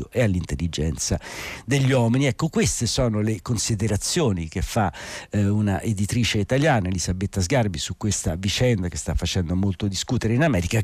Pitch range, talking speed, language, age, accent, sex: 90-115 Hz, 150 wpm, Italian, 60-79, native, male